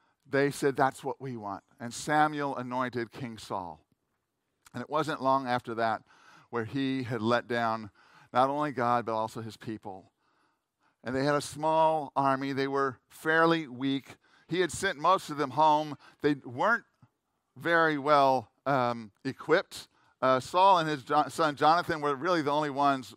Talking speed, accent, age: 165 wpm, American, 50-69